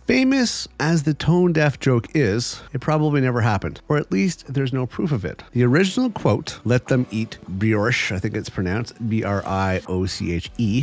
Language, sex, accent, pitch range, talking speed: English, male, American, 105-150 Hz, 165 wpm